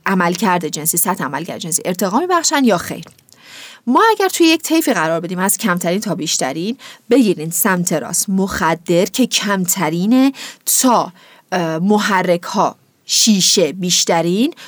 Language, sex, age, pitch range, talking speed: Persian, female, 40-59, 170-230 Hz, 140 wpm